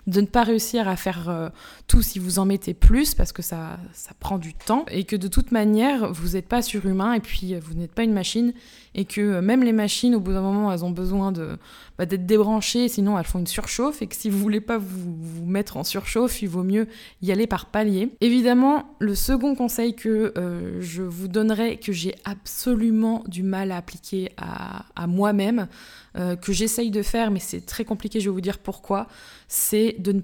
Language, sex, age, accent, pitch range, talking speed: French, female, 20-39, French, 185-225 Hz, 220 wpm